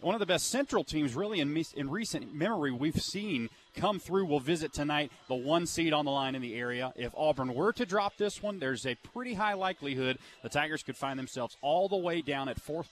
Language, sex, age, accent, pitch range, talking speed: English, male, 30-49, American, 125-160 Hz, 235 wpm